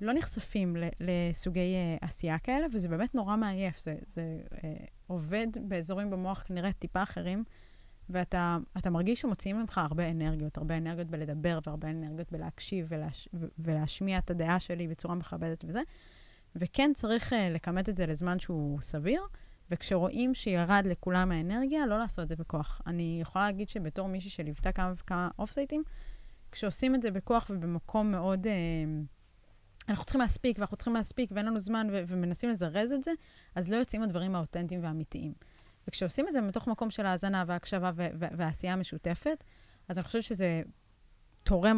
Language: Hebrew